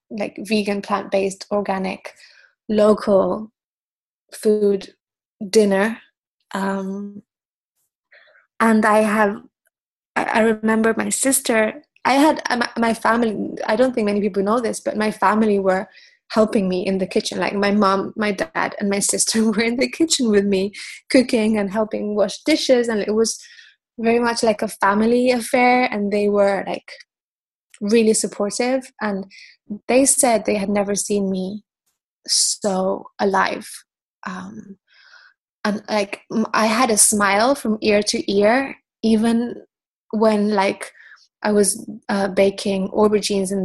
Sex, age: female, 20-39